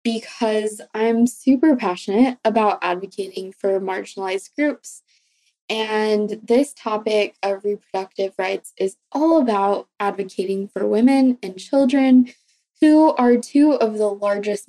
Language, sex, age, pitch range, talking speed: English, female, 20-39, 200-265 Hz, 120 wpm